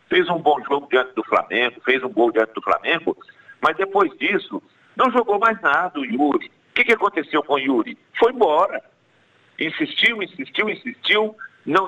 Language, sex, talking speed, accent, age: Portuguese, male, 170 wpm, Brazilian, 60-79